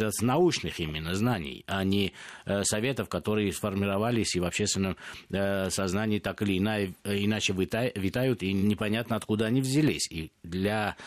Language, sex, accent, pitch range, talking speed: Russian, male, native, 100-135 Hz, 125 wpm